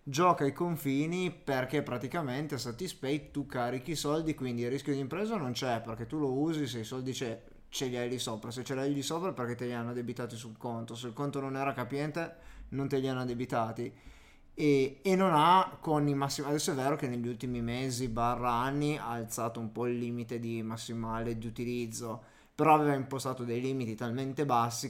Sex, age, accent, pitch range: male, 20-39, native, 120-145 Hz